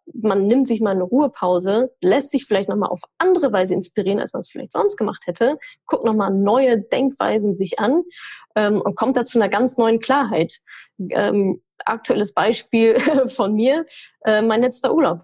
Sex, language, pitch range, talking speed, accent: female, German, 215-300 Hz, 185 wpm, German